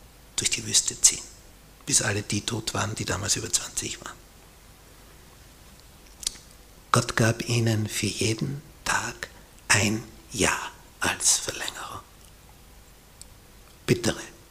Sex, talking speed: male, 105 wpm